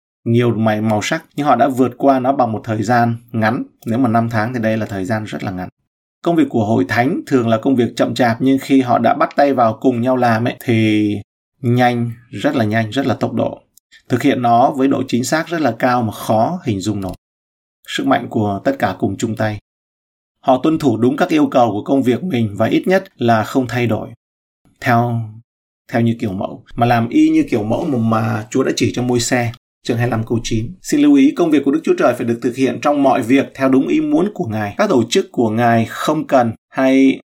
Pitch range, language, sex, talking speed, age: 110-135 Hz, Vietnamese, male, 240 wpm, 20-39